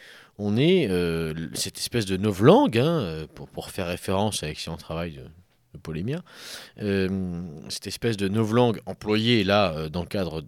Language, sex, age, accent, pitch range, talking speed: French, male, 30-49, French, 90-130 Hz, 160 wpm